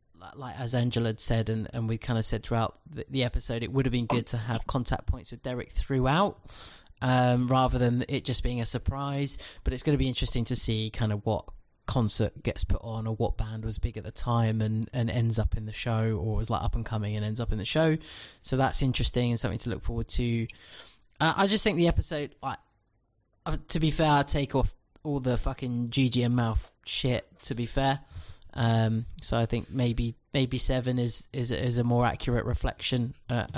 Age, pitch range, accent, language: 20-39, 115-135 Hz, British, English